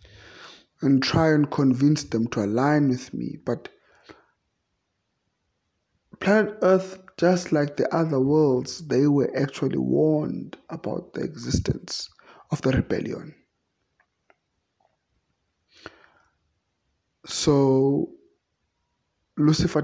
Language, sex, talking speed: English, male, 90 wpm